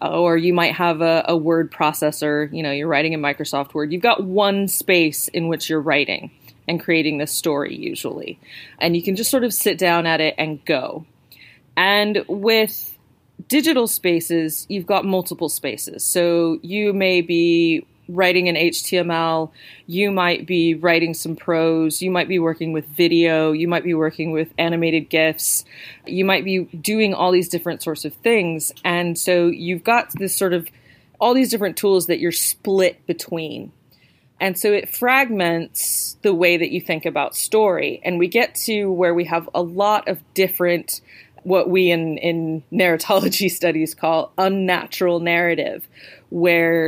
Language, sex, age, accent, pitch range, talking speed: English, female, 30-49, American, 160-185 Hz, 170 wpm